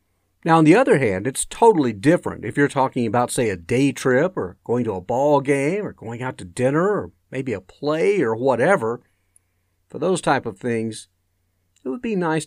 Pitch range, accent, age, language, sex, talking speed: 100-150 Hz, American, 50-69, English, male, 200 wpm